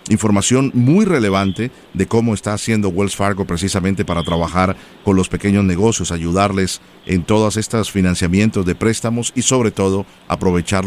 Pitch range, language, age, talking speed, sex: 90-110 Hz, Spanish, 40-59, 150 wpm, male